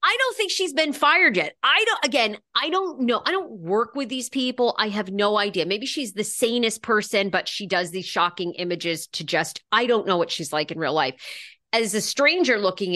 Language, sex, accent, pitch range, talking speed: English, female, American, 190-260 Hz, 225 wpm